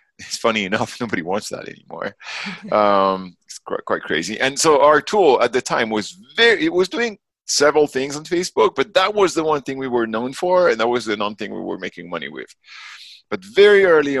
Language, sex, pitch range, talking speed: English, male, 90-130 Hz, 220 wpm